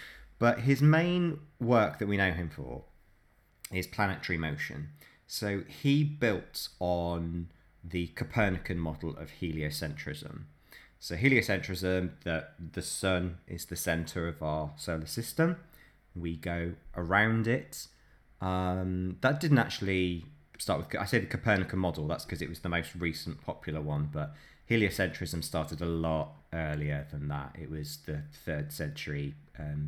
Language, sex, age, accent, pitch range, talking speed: English, male, 20-39, British, 80-105 Hz, 145 wpm